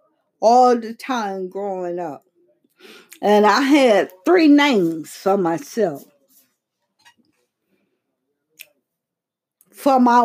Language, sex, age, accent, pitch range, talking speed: English, female, 50-69, American, 180-270 Hz, 80 wpm